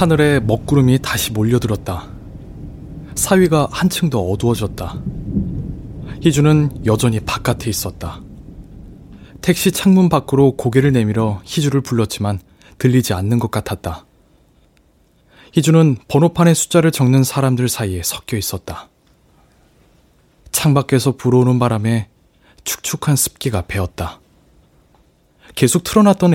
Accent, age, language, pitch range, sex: native, 20-39, Korean, 95-140 Hz, male